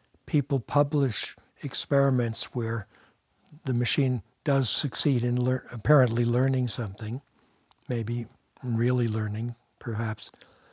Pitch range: 115-135 Hz